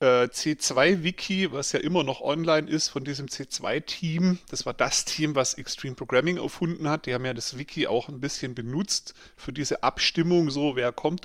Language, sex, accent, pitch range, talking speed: German, male, German, 125-160 Hz, 180 wpm